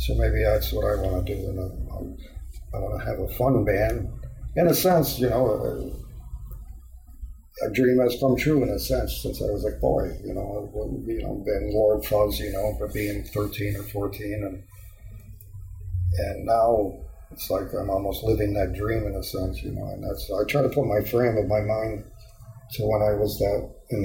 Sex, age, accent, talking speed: male, 50-69, American, 205 wpm